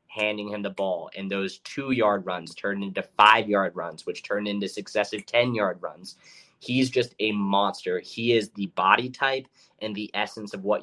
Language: English